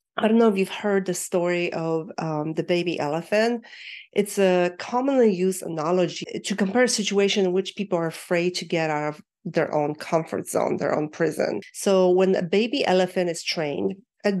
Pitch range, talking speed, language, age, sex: 175-205 Hz, 190 wpm, English, 40-59, female